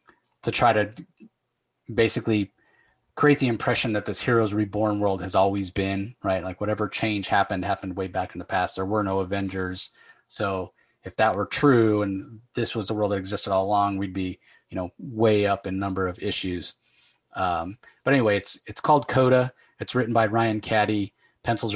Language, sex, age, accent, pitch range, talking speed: English, male, 30-49, American, 100-115 Hz, 185 wpm